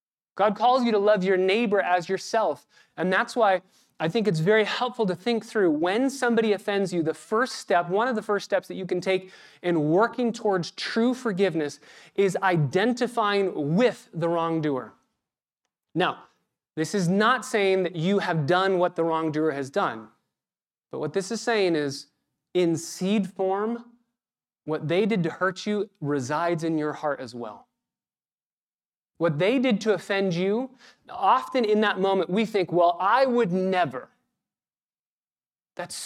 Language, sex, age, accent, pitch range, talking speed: English, male, 30-49, American, 170-220 Hz, 165 wpm